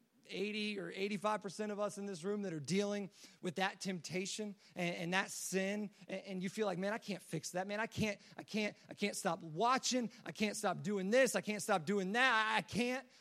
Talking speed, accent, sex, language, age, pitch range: 225 wpm, American, male, English, 30-49, 180-210 Hz